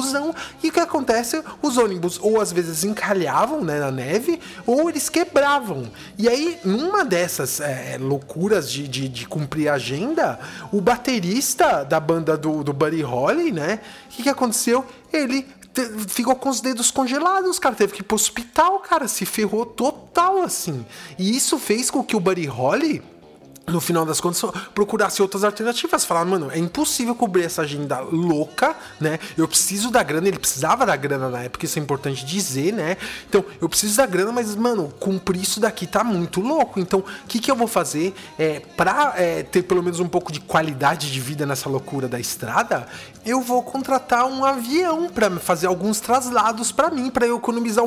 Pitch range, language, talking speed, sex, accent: 165-255 Hz, English, 185 wpm, male, Brazilian